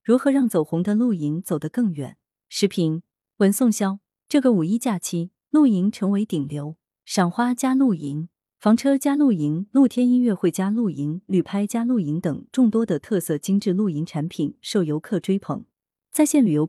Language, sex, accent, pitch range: Chinese, female, native, 165-230 Hz